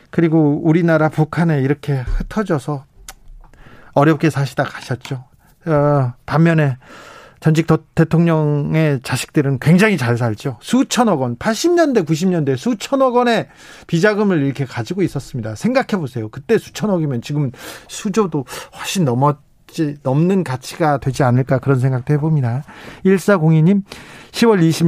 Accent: native